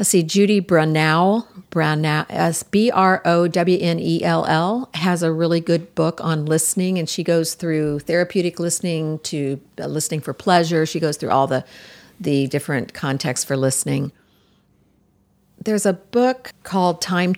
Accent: American